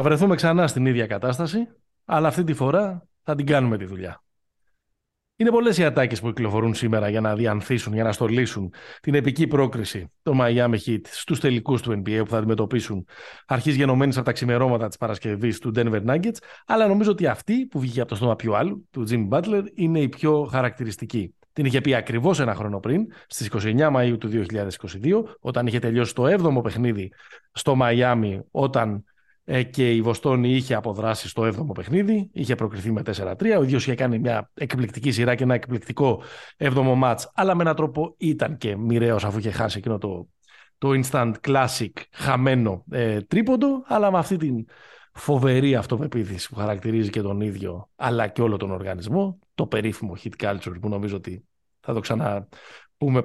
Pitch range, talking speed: 110-145 Hz, 180 wpm